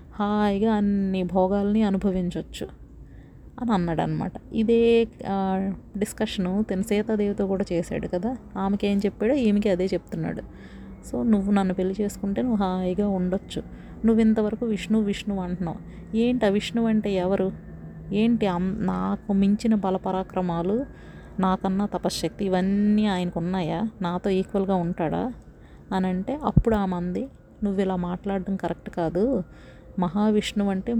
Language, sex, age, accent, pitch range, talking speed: Telugu, female, 30-49, native, 190-220 Hz, 120 wpm